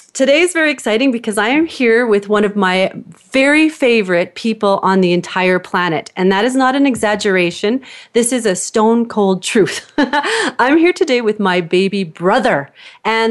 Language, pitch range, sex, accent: English, 185-230 Hz, female, American